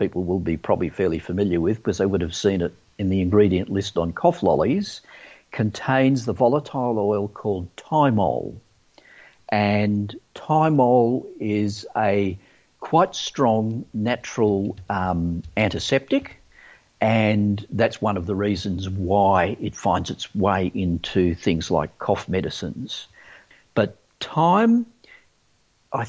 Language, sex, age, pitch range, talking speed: English, male, 50-69, 95-125 Hz, 125 wpm